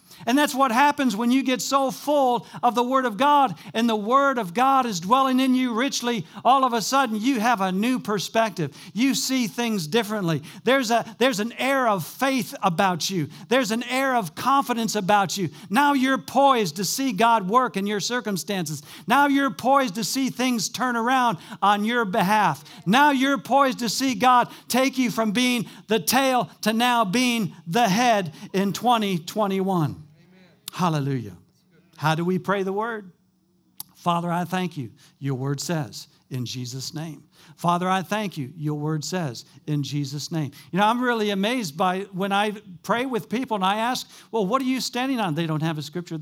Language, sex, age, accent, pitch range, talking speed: English, male, 50-69, American, 175-245 Hz, 185 wpm